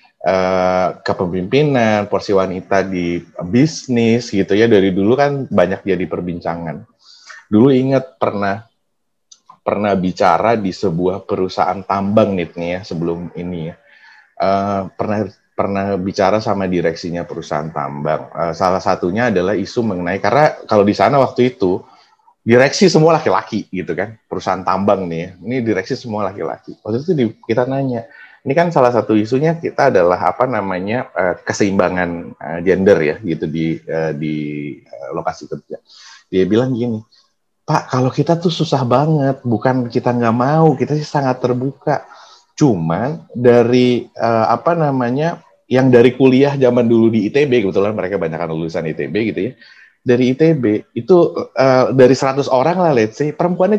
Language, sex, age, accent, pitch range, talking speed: Indonesian, male, 30-49, native, 95-135 Hz, 145 wpm